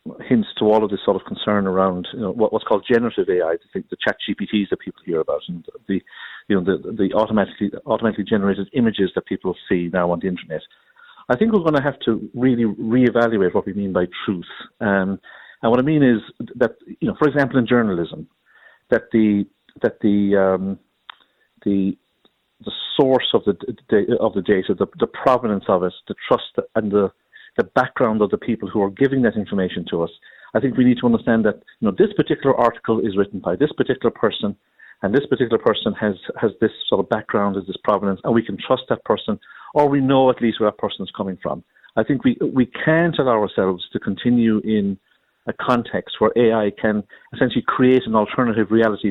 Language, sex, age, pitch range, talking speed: English, male, 50-69, 100-125 Hz, 210 wpm